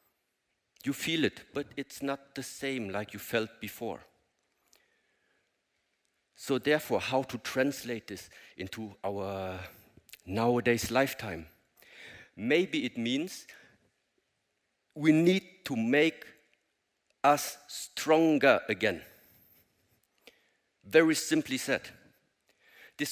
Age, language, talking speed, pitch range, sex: 50-69, English, 95 wpm, 110-150 Hz, male